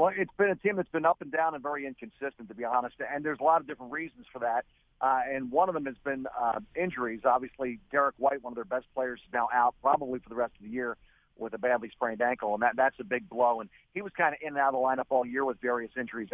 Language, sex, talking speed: English, male, 285 wpm